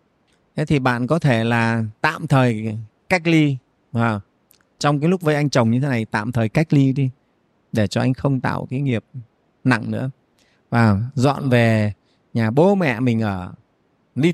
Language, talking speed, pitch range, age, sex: Vietnamese, 180 wpm, 115-155 Hz, 20-39, male